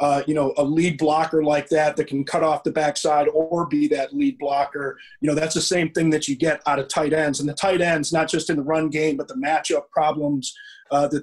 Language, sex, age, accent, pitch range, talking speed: English, male, 30-49, American, 145-165 Hz, 255 wpm